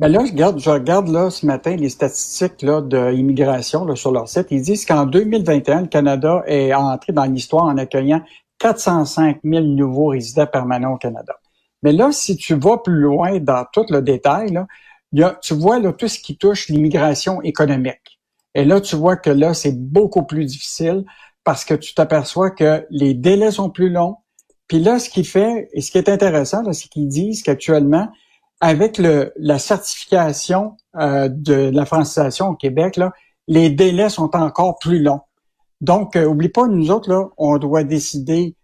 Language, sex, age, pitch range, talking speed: French, male, 60-79, 145-185 Hz, 185 wpm